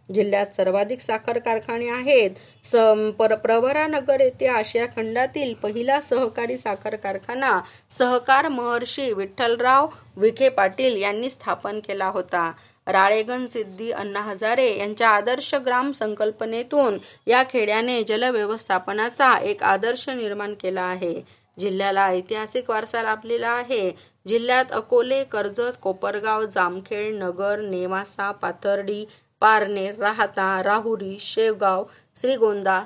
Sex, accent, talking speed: female, native, 95 wpm